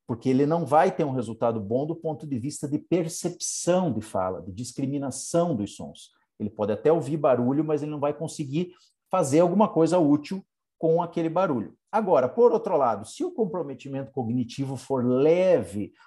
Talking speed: 175 wpm